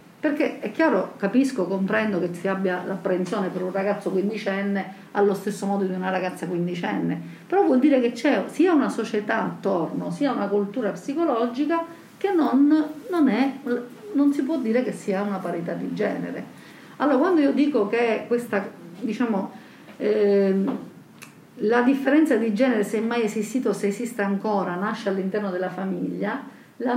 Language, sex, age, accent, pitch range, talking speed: Italian, female, 50-69, native, 195-280 Hz, 160 wpm